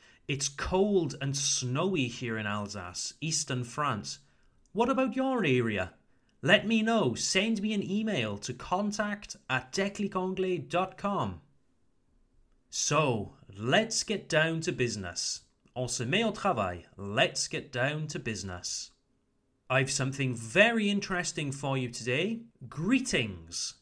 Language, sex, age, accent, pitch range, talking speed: French, male, 30-49, British, 125-190 Hz, 120 wpm